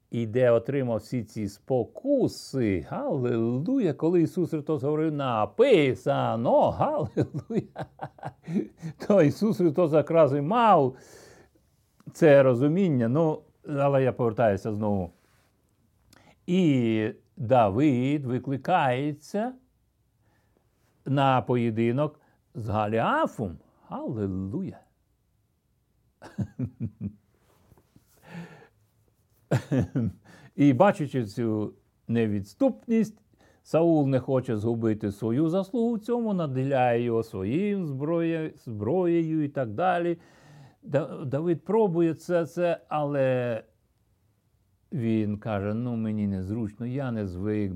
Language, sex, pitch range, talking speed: Ukrainian, male, 105-155 Hz, 80 wpm